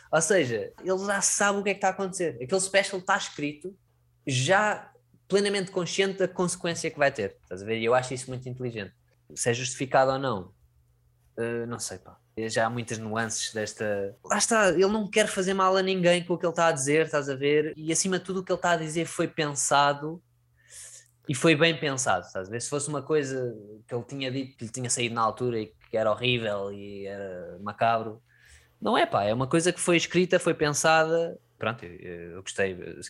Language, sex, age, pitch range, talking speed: Portuguese, male, 20-39, 115-170 Hz, 205 wpm